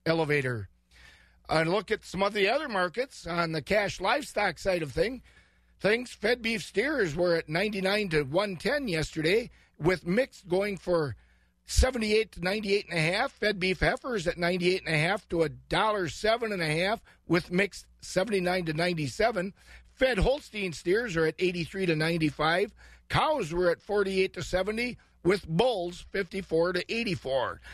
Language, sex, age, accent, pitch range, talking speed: English, male, 50-69, American, 165-200 Hz, 160 wpm